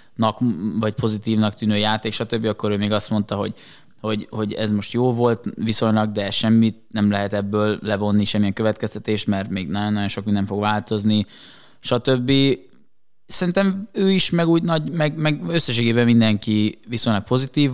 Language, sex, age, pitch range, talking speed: Hungarian, male, 20-39, 105-120 Hz, 155 wpm